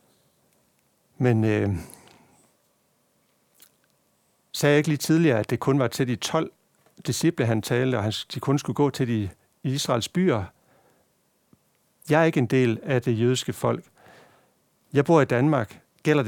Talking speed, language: 145 wpm, Danish